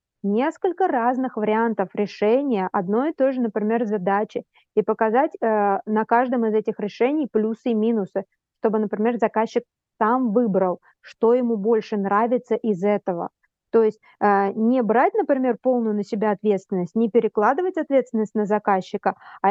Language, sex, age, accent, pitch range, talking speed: Russian, female, 20-39, native, 205-240 Hz, 150 wpm